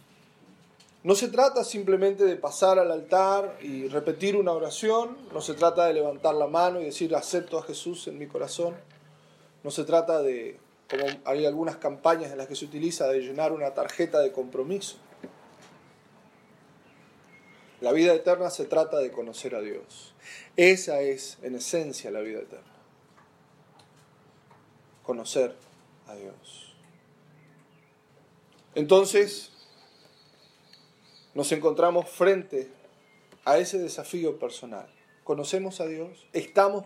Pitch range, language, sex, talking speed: 145-195 Hz, Spanish, male, 125 wpm